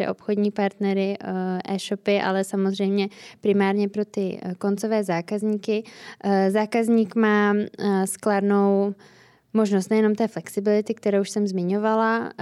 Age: 20-39